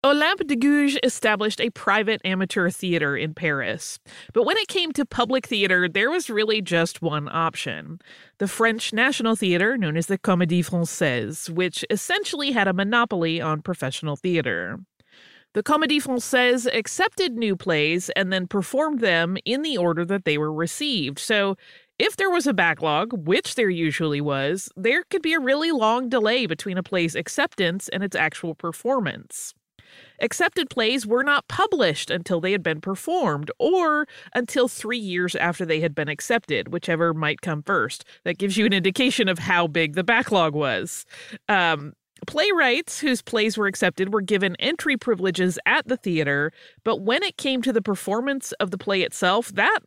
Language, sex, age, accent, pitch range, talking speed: English, female, 30-49, American, 170-250 Hz, 170 wpm